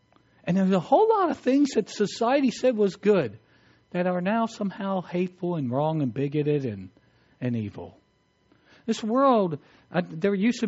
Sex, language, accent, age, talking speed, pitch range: male, English, American, 60-79, 170 wpm, 130-205 Hz